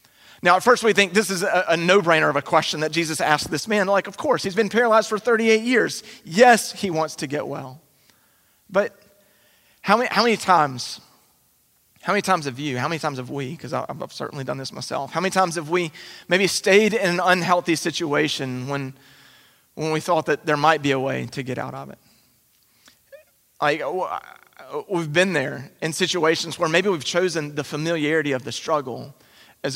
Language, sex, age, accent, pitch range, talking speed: English, male, 30-49, American, 155-205 Hz, 195 wpm